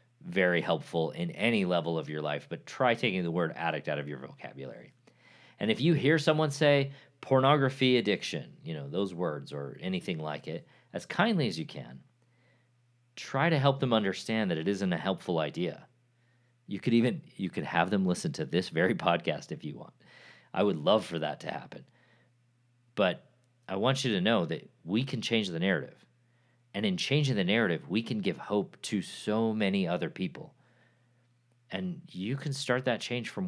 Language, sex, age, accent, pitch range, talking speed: English, male, 40-59, American, 95-130 Hz, 190 wpm